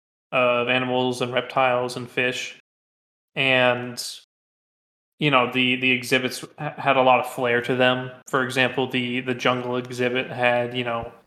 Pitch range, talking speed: 125-135 Hz, 155 wpm